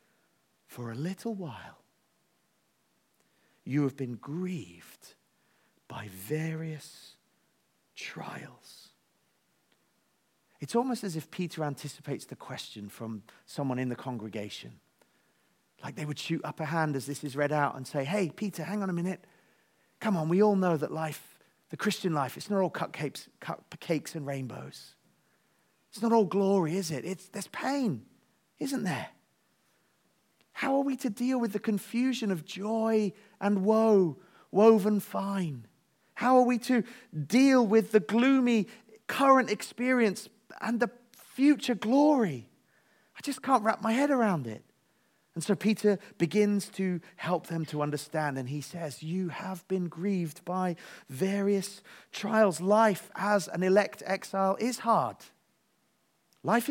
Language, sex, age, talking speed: English, male, 40-59, 140 wpm